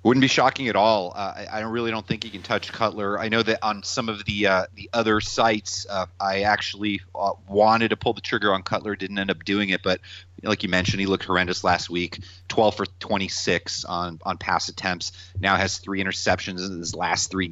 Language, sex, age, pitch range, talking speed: English, male, 30-49, 90-110 Hz, 235 wpm